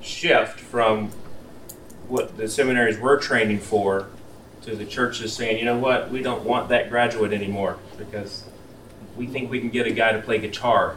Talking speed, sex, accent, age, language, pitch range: 175 wpm, male, American, 30-49, English, 105-120 Hz